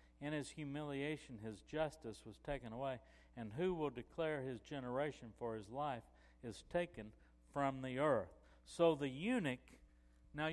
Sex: male